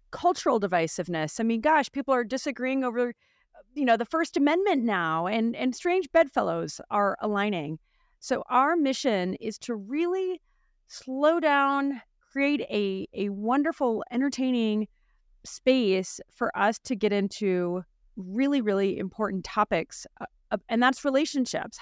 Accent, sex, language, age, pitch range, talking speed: American, female, English, 30-49, 195-275 Hz, 130 wpm